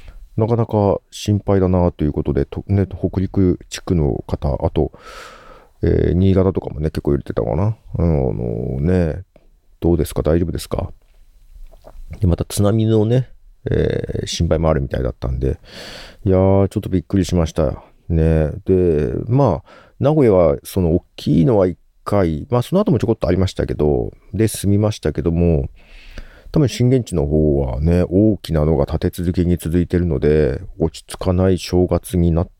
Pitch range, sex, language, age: 75-105 Hz, male, Japanese, 40-59